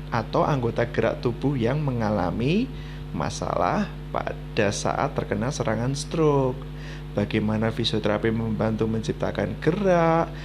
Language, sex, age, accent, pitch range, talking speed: Indonesian, male, 20-39, native, 120-150 Hz, 100 wpm